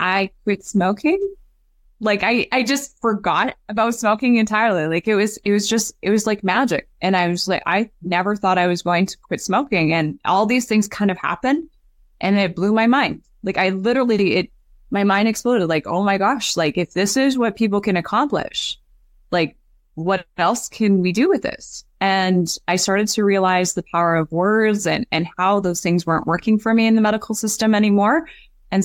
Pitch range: 175-220 Hz